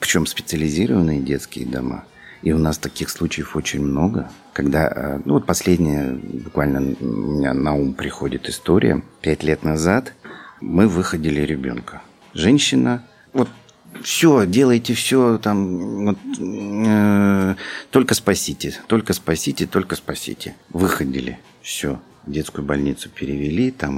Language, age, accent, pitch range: Russian, 50-69, native, 70-90 Hz